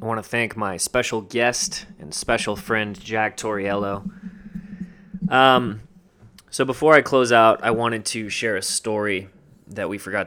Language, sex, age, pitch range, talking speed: English, male, 20-39, 105-125 Hz, 160 wpm